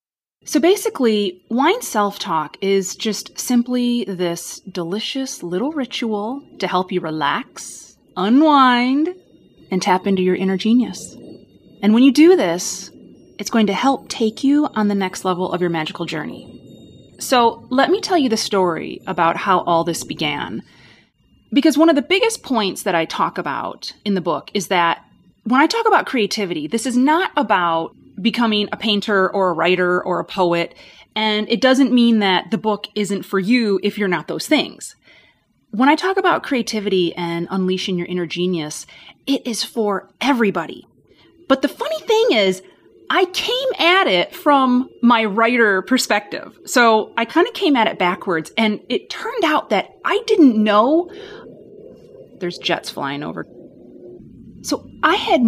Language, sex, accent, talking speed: English, female, American, 165 wpm